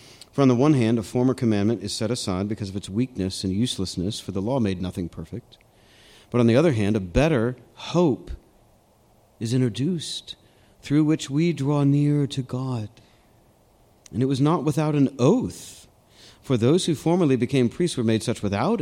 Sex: male